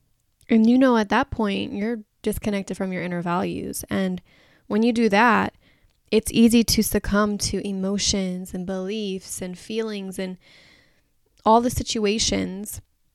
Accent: American